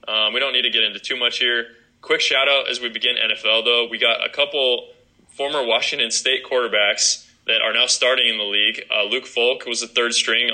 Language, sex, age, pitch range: English, male, 20-39, 105-125 Hz